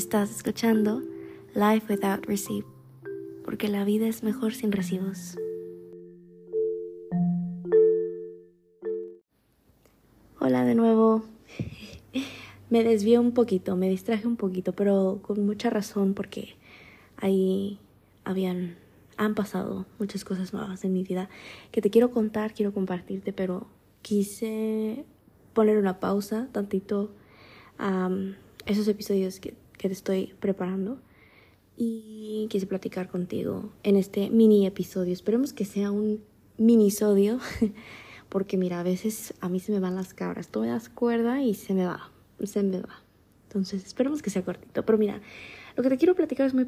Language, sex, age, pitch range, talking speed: Spanish, female, 20-39, 180-220 Hz, 140 wpm